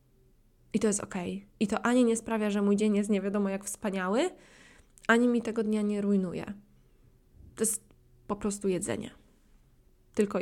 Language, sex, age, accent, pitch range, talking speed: Polish, female, 20-39, native, 195-235 Hz, 165 wpm